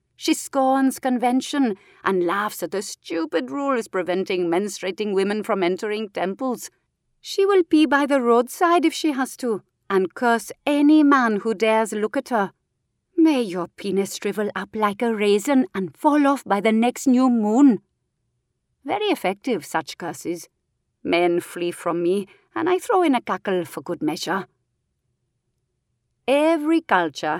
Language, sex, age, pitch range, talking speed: English, female, 40-59, 185-270 Hz, 150 wpm